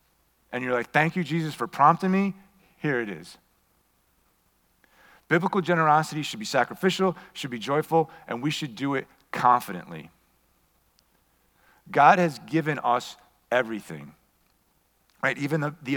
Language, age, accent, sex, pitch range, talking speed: English, 40-59, American, male, 120-155 Hz, 130 wpm